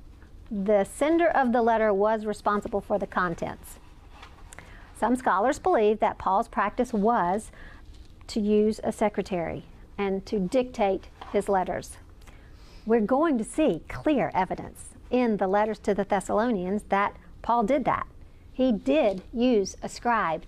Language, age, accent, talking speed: English, 50-69, American, 140 wpm